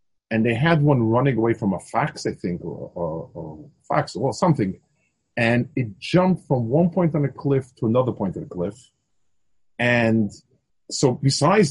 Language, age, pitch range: English, 40-59, 120-165 Hz